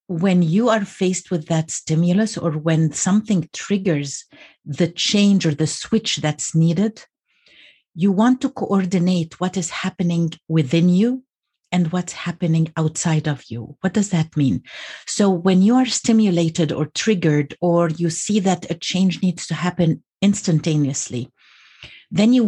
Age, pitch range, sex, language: 50-69, 160-200 Hz, female, English